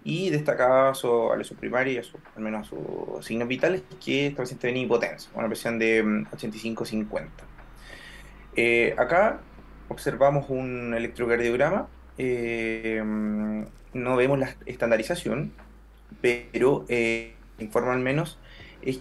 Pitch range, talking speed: 110-125 Hz, 115 wpm